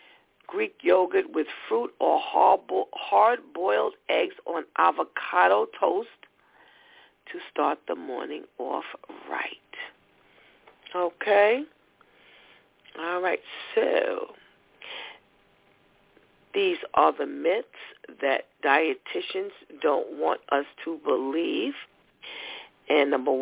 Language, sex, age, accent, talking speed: English, female, 50-69, American, 85 wpm